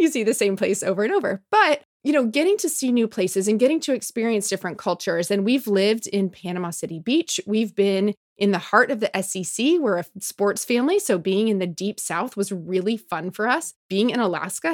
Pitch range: 185-250 Hz